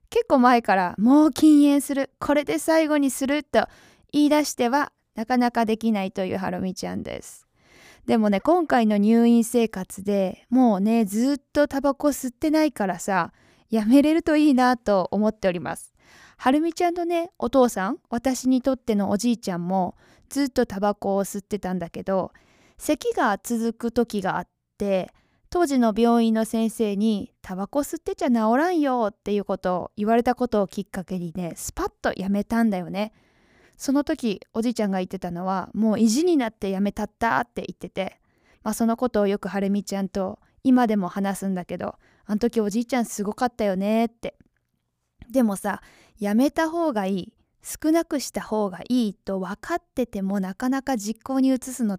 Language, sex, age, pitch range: Japanese, female, 20-39, 200-270 Hz